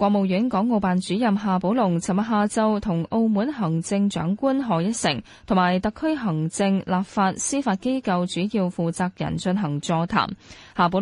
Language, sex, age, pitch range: Chinese, female, 10-29, 170-220 Hz